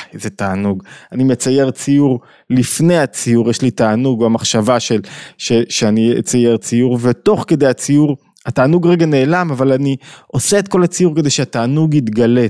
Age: 20-39